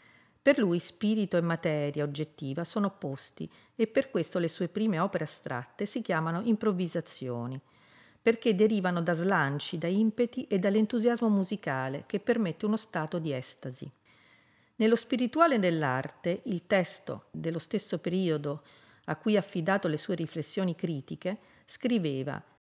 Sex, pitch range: female, 155-210 Hz